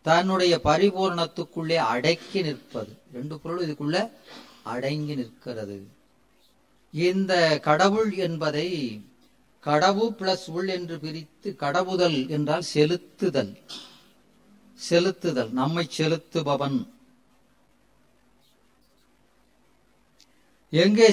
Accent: native